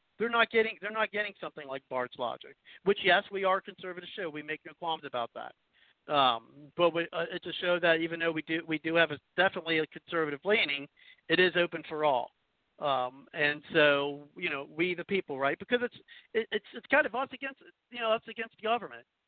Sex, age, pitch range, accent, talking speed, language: male, 50-69, 155-210 Hz, American, 220 wpm, English